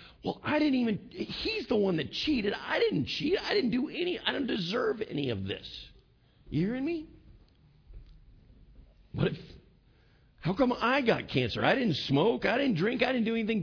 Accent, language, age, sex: American, English, 50-69, male